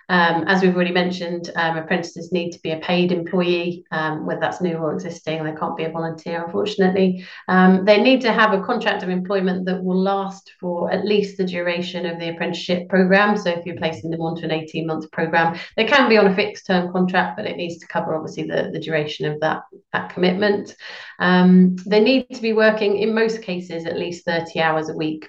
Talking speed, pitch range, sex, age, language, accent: 220 wpm, 155-185 Hz, female, 30-49, English, British